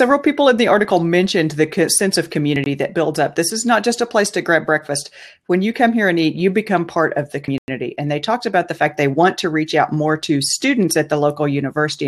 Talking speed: 260 wpm